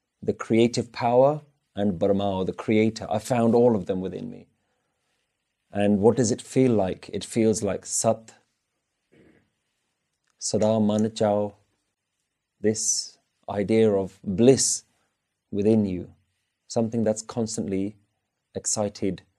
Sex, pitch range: male, 100-120 Hz